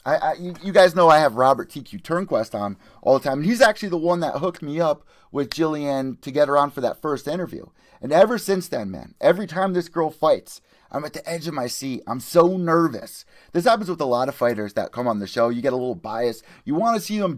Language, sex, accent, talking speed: English, male, American, 260 wpm